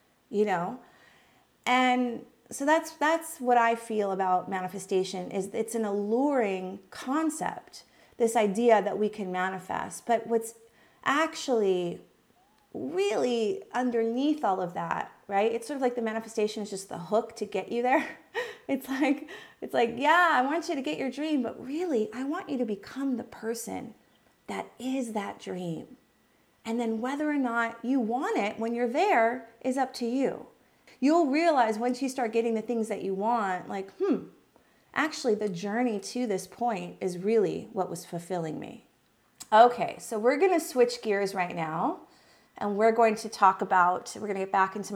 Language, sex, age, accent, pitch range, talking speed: English, female, 30-49, American, 205-260 Hz, 170 wpm